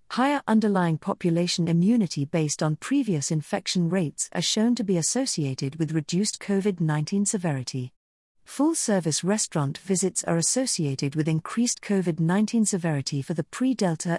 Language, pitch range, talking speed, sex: English, 160-205 Hz, 125 wpm, female